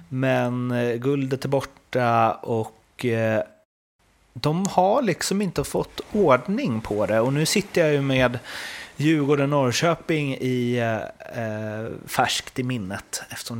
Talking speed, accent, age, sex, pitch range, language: 125 wpm, native, 30-49, male, 110-135 Hz, Swedish